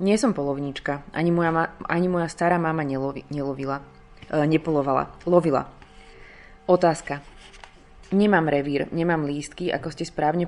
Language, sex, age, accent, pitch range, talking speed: Czech, female, 20-39, native, 140-170 Hz, 125 wpm